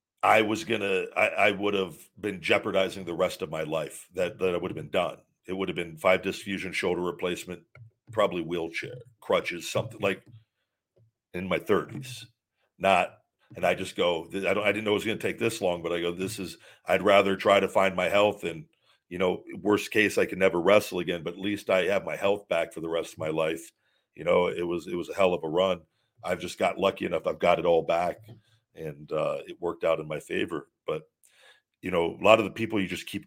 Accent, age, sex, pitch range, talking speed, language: American, 50-69, male, 95-110 Hz, 235 wpm, English